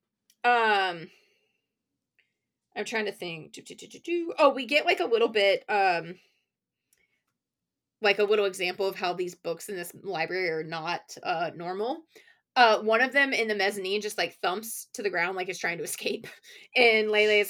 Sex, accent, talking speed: female, American, 170 wpm